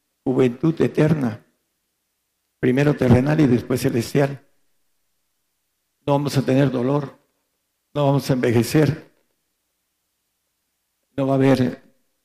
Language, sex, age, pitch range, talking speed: Spanish, male, 60-79, 115-145 Hz, 100 wpm